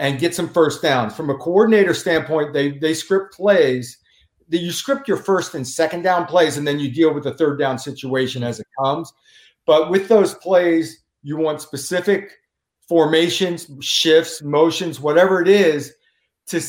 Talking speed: 170 wpm